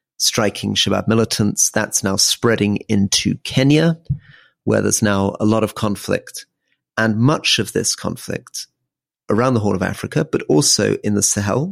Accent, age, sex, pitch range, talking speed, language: British, 40-59, male, 105-140 Hz, 155 wpm, English